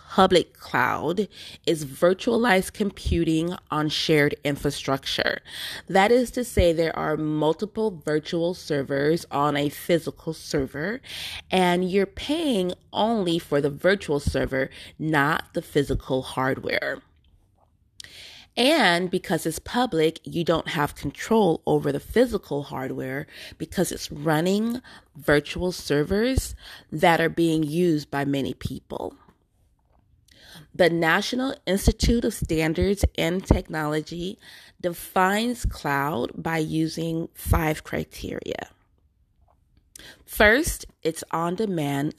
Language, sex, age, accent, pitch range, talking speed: English, female, 30-49, American, 145-185 Hz, 105 wpm